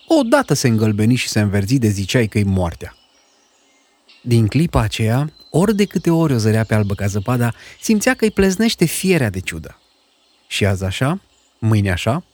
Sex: male